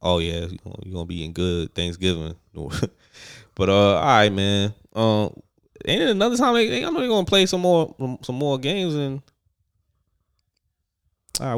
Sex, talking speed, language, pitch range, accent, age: male, 165 wpm, English, 95-160 Hz, American, 20-39